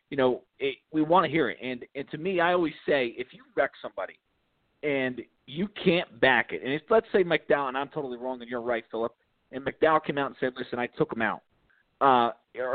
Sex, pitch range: male, 140-170 Hz